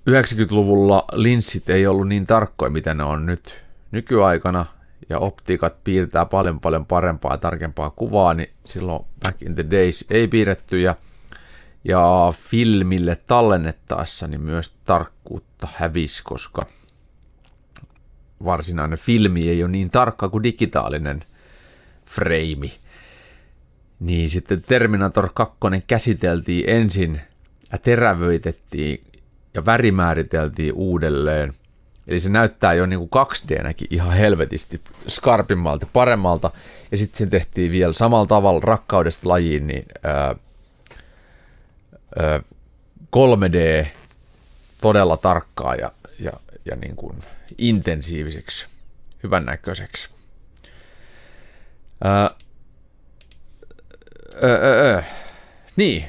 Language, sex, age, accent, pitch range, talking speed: Finnish, male, 30-49, native, 80-105 Hz, 95 wpm